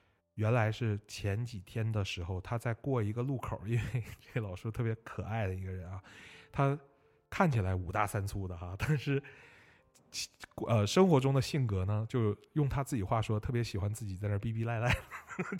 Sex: male